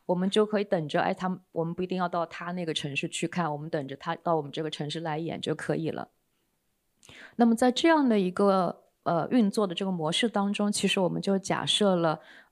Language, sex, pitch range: Chinese, female, 165-215 Hz